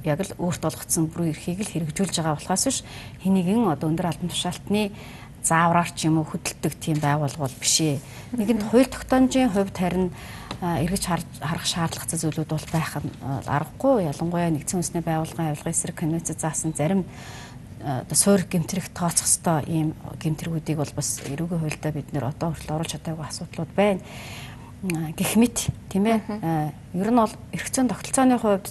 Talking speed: 125 wpm